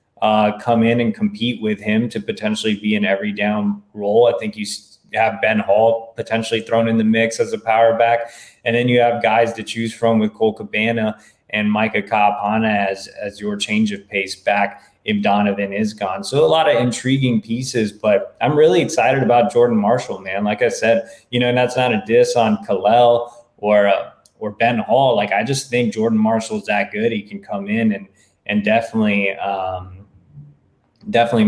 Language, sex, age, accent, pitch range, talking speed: English, male, 20-39, American, 110-160 Hz, 195 wpm